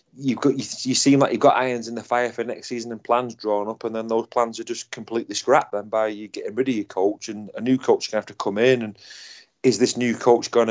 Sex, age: male, 30-49